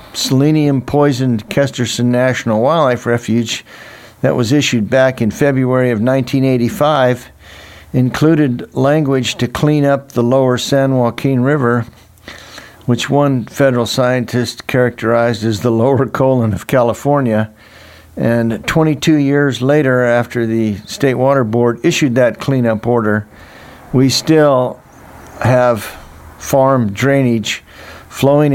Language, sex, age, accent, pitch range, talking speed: English, male, 60-79, American, 105-130 Hz, 115 wpm